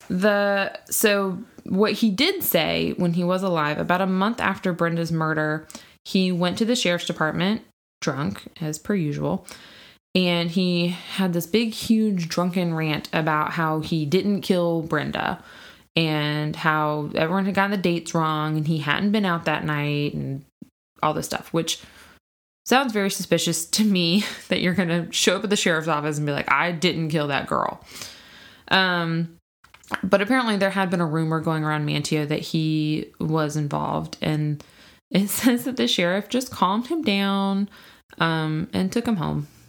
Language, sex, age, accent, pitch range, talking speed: English, female, 20-39, American, 160-200 Hz, 170 wpm